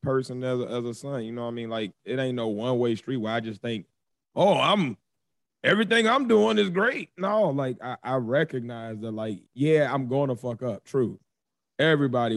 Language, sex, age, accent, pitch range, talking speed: English, male, 20-39, American, 105-125 Hz, 205 wpm